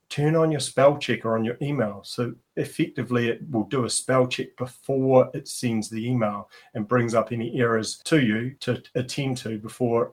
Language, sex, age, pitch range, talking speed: English, male, 40-59, 115-130 Hz, 190 wpm